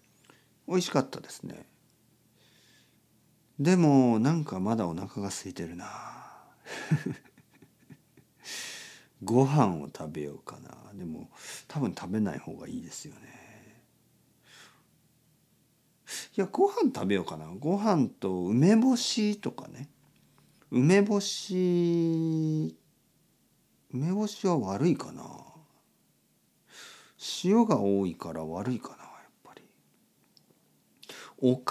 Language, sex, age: Japanese, male, 50-69